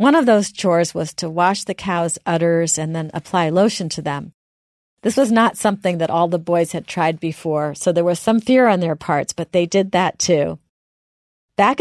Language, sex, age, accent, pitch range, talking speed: English, female, 40-59, American, 165-205 Hz, 210 wpm